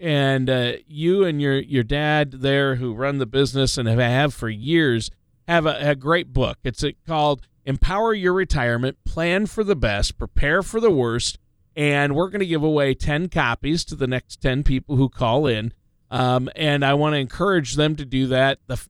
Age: 40-59